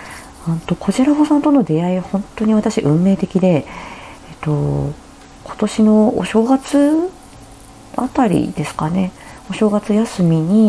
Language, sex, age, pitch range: Japanese, female, 40-59, 150-210 Hz